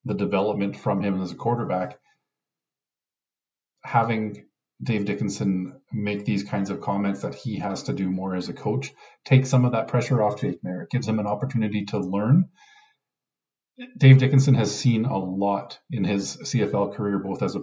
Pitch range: 100-130 Hz